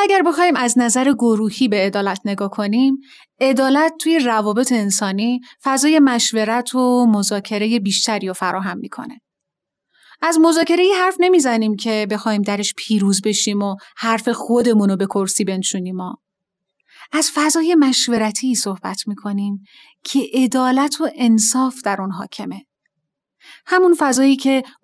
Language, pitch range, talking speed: Persian, 210-275 Hz, 130 wpm